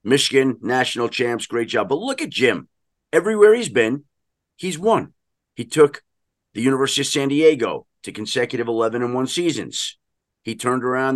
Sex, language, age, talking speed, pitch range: male, English, 40-59, 160 wpm, 115-160 Hz